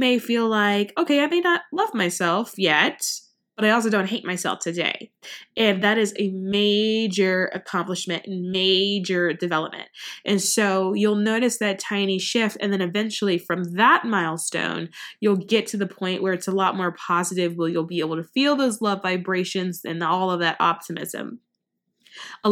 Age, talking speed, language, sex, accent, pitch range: 20-39, 175 wpm, English, female, American, 180-205 Hz